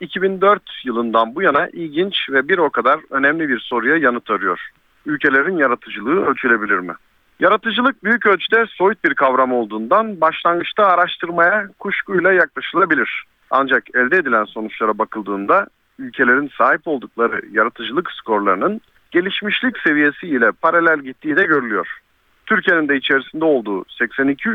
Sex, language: male, Turkish